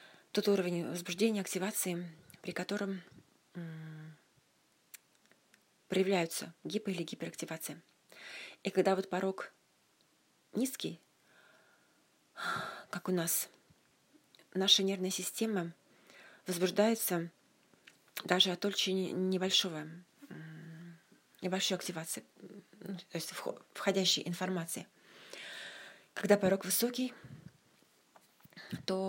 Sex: female